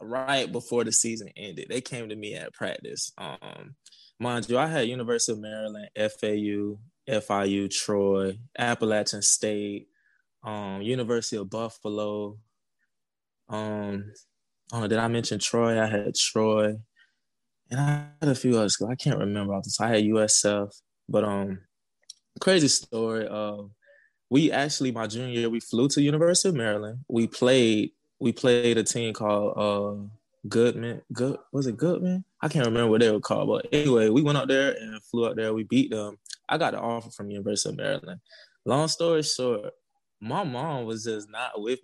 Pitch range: 105-130 Hz